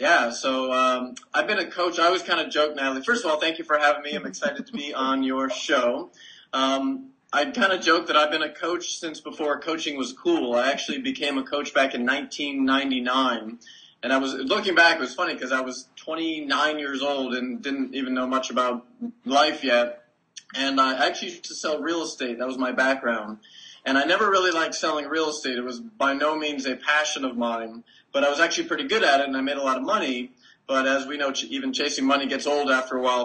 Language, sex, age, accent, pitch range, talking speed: English, male, 20-39, American, 130-160 Hz, 235 wpm